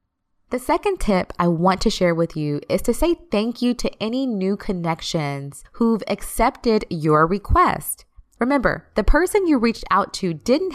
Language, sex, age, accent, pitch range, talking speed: English, female, 20-39, American, 165-230 Hz, 165 wpm